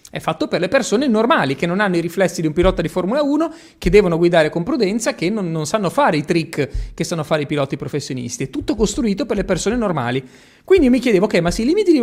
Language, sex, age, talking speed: Italian, male, 30-49, 255 wpm